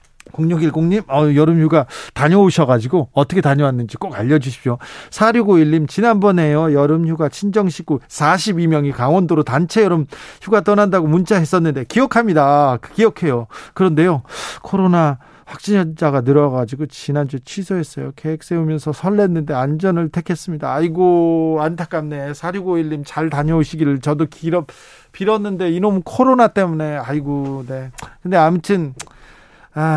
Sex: male